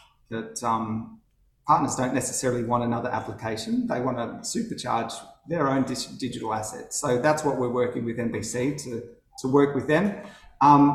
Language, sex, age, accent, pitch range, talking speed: English, male, 30-49, Australian, 120-135 Hz, 160 wpm